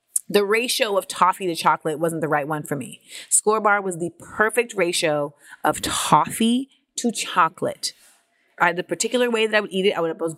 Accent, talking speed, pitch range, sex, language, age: American, 190 wpm, 160-205 Hz, female, English, 30-49